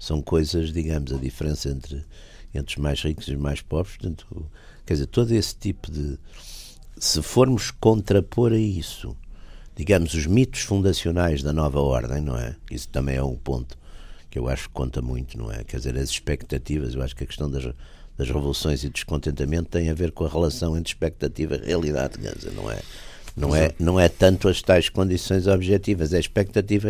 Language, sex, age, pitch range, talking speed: Portuguese, male, 60-79, 70-95 Hz, 195 wpm